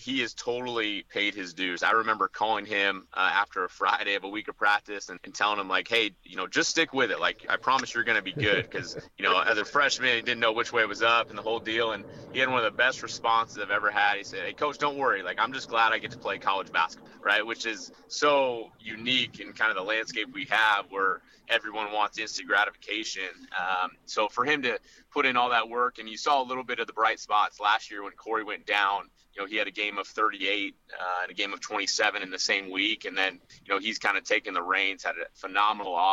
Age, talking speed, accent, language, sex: 30-49, 265 wpm, American, English, male